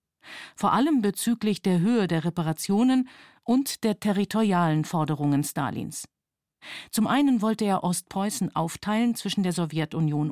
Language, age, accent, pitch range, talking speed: German, 50-69, German, 160-215 Hz, 120 wpm